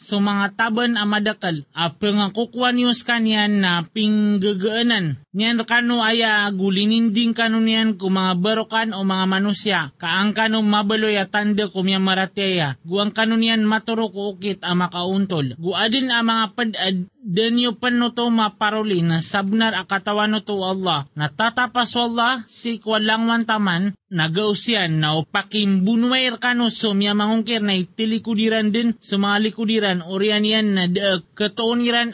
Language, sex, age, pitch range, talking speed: Filipino, male, 20-39, 190-225 Hz, 135 wpm